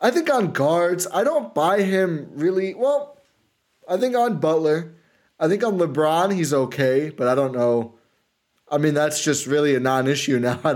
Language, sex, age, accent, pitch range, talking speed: English, male, 20-39, American, 120-160 Hz, 185 wpm